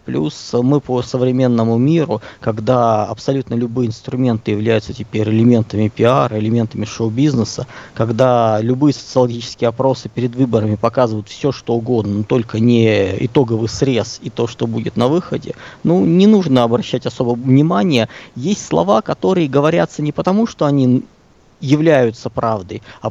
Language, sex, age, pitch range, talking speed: Russian, male, 20-39, 115-165 Hz, 140 wpm